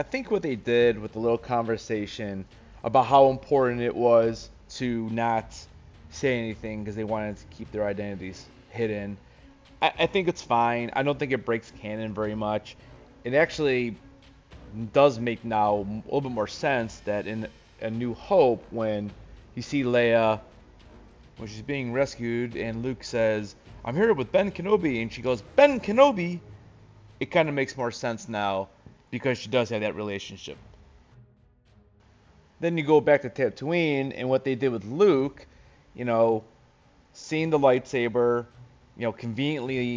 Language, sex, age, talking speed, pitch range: English, male, 30-49, 160 wpm, 105-130 Hz